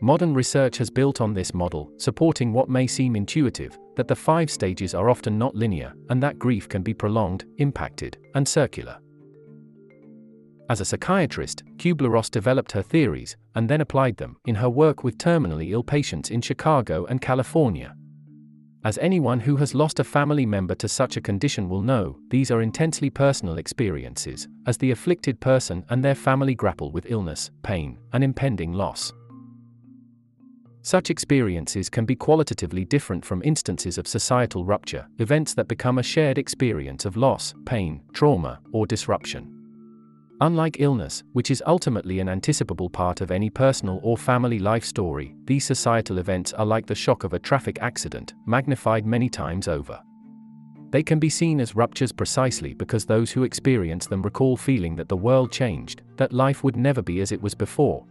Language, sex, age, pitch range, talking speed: English, male, 40-59, 90-135 Hz, 170 wpm